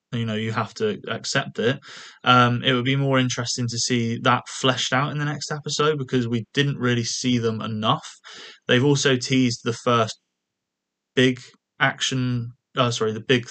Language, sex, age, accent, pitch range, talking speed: English, male, 20-39, British, 115-135 Hz, 180 wpm